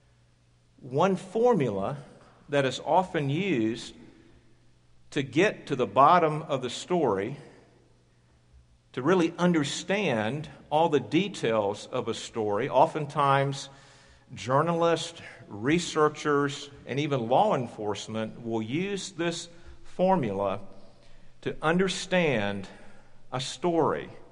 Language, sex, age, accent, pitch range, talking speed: English, male, 50-69, American, 130-175 Hz, 95 wpm